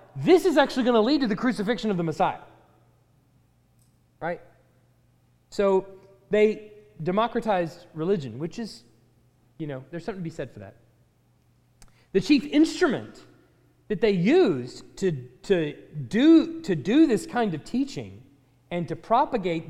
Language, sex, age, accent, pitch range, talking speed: English, male, 30-49, American, 125-200 Hz, 140 wpm